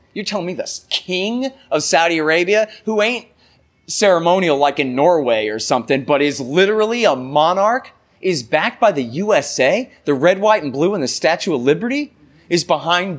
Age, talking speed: 30-49, 175 wpm